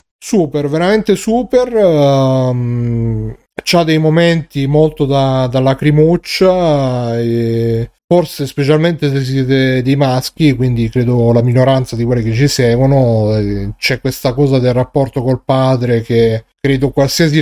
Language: Italian